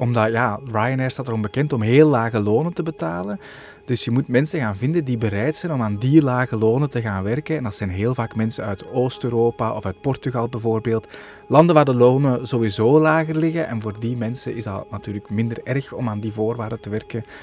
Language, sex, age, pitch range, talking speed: Dutch, male, 20-39, 115-160 Hz, 215 wpm